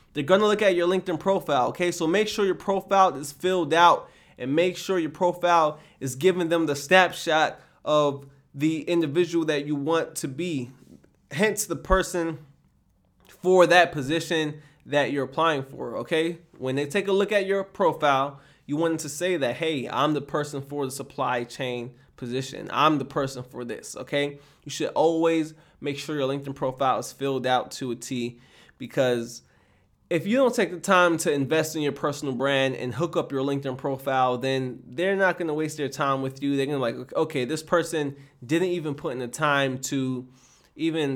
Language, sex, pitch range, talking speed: English, male, 135-175 Hz, 190 wpm